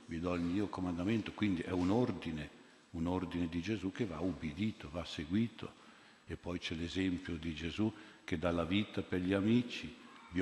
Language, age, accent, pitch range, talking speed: Italian, 50-69, native, 85-100 Hz, 185 wpm